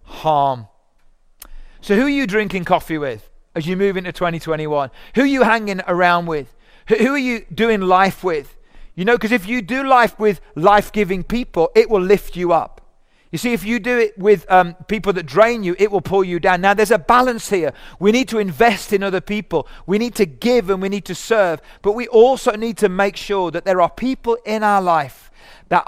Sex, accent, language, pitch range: male, British, English, 175-215 Hz